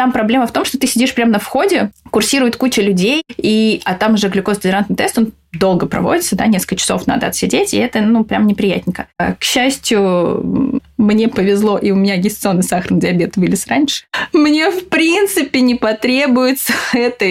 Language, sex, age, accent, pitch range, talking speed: Russian, female, 20-39, native, 190-240 Hz, 175 wpm